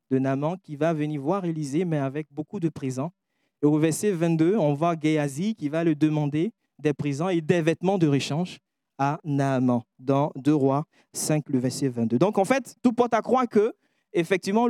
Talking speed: 195 wpm